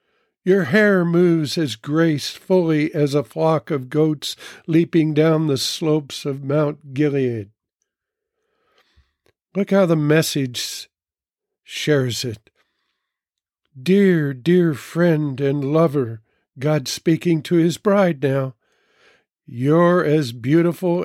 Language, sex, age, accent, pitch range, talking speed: English, male, 60-79, American, 140-175 Hz, 105 wpm